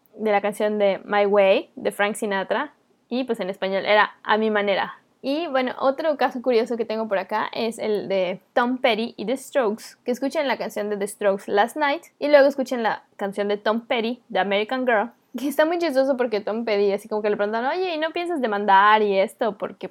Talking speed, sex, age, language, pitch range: 225 wpm, female, 20-39, Spanish, 205-255 Hz